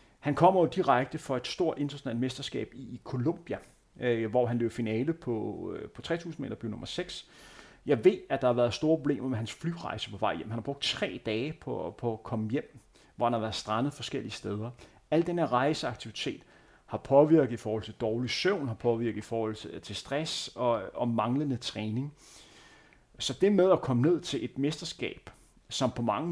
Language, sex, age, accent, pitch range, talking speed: Danish, male, 30-49, native, 115-145 Hz, 205 wpm